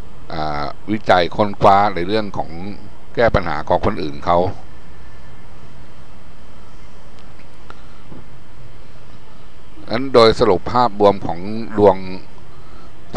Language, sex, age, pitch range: Thai, male, 60-79, 85-105 Hz